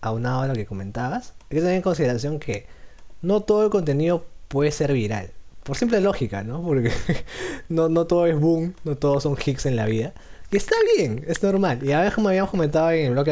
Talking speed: 235 wpm